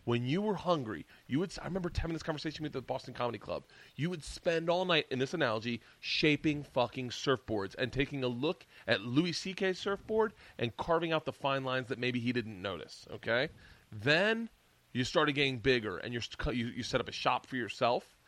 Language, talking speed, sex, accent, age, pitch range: English, 205 wpm, male, American, 30-49, 120-170 Hz